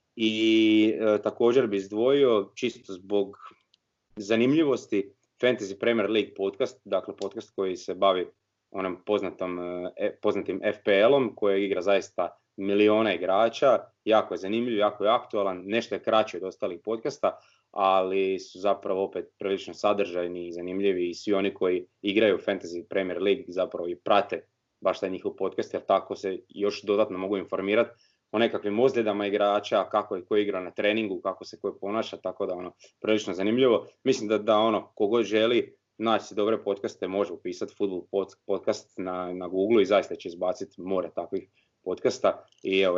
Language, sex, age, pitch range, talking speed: Croatian, male, 20-39, 95-110 Hz, 160 wpm